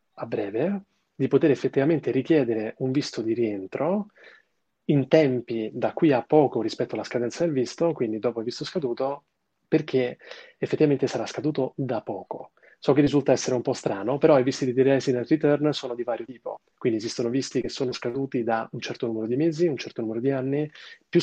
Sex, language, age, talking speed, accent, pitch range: male, Italian, 30-49, 190 wpm, native, 120-145 Hz